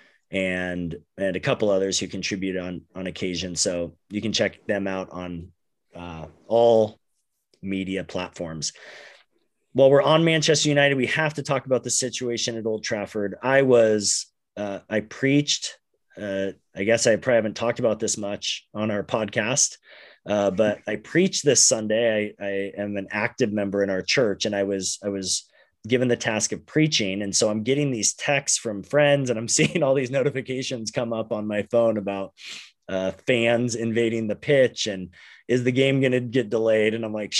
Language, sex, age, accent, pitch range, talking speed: English, male, 30-49, American, 95-125 Hz, 185 wpm